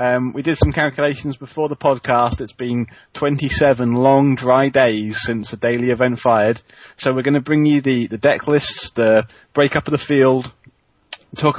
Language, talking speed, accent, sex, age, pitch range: English, 180 wpm, British, male, 30-49, 120-145 Hz